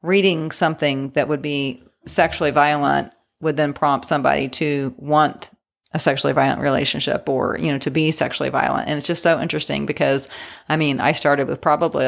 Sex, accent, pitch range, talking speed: female, American, 140-155 Hz, 180 wpm